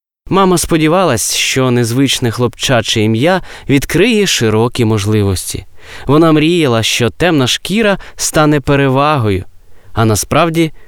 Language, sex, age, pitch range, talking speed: Ukrainian, male, 20-39, 110-145 Hz, 100 wpm